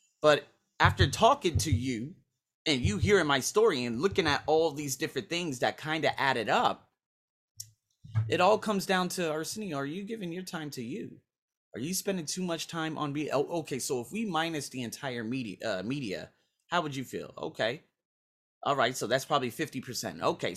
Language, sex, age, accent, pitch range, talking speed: English, male, 30-49, American, 120-155 Hz, 190 wpm